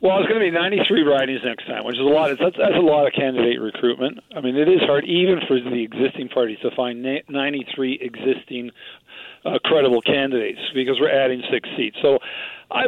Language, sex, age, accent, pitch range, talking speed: English, male, 50-69, American, 125-150 Hz, 200 wpm